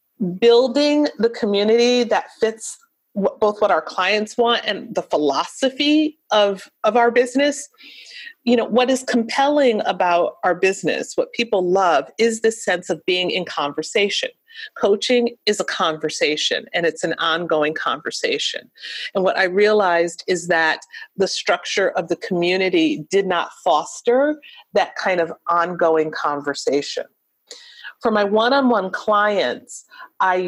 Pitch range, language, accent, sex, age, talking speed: 185-250 Hz, English, American, female, 40-59, 135 wpm